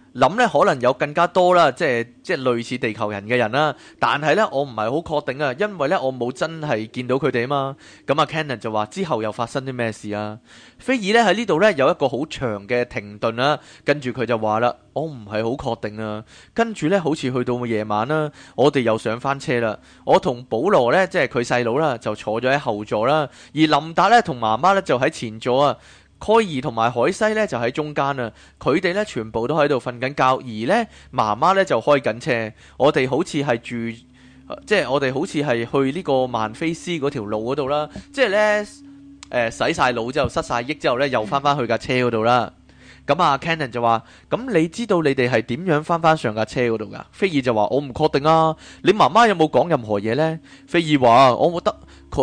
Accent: native